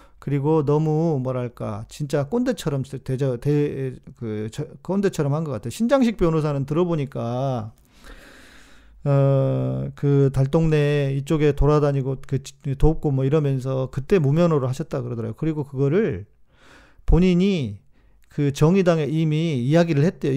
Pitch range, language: 135-185 Hz, Korean